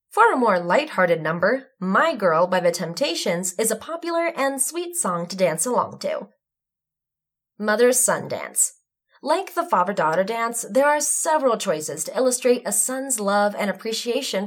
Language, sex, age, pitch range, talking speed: English, female, 20-39, 195-270 Hz, 160 wpm